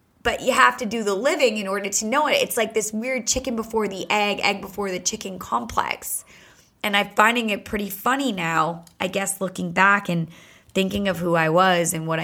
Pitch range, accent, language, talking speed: 175-215 Hz, American, English, 215 wpm